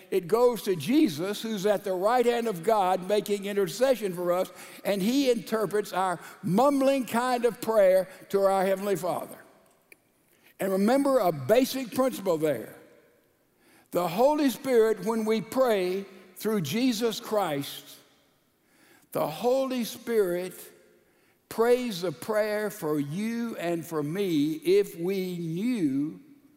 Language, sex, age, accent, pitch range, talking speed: English, male, 60-79, American, 185-245 Hz, 125 wpm